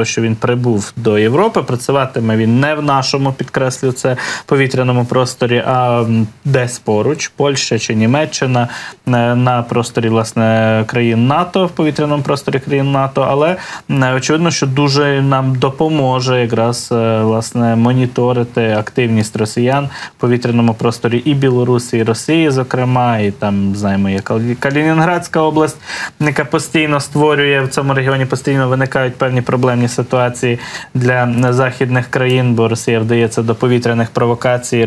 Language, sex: Ukrainian, male